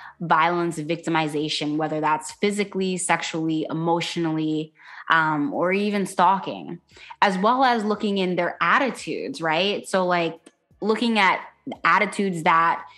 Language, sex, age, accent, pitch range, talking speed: English, female, 20-39, American, 160-195 Hz, 115 wpm